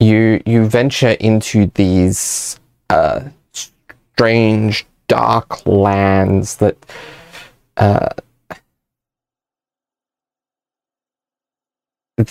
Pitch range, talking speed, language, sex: 100-120 Hz, 50 wpm, English, male